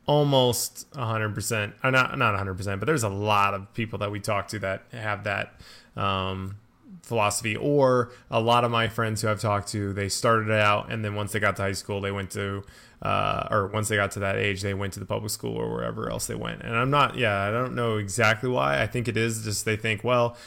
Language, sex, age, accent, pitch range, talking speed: English, male, 20-39, American, 100-120 Hz, 235 wpm